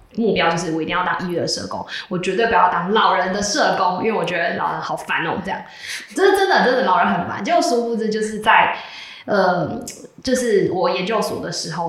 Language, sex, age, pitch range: Chinese, female, 20-39, 175-220 Hz